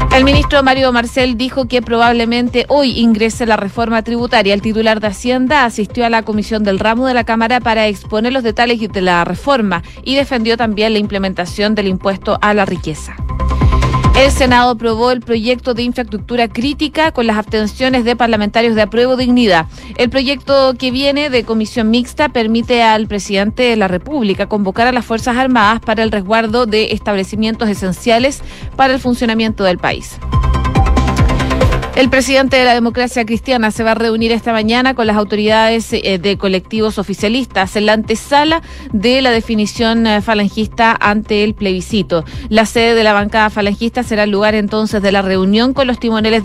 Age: 30-49